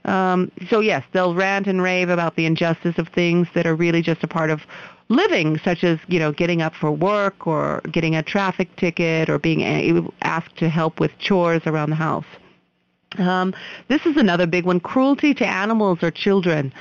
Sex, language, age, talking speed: female, English, 50-69, 195 wpm